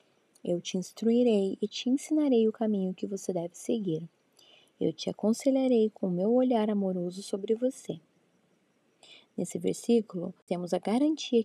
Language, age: Portuguese, 10-29